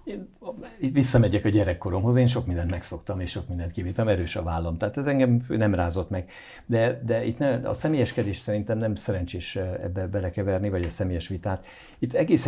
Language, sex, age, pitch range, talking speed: Hungarian, male, 60-79, 90-115 Hz, 185 wpm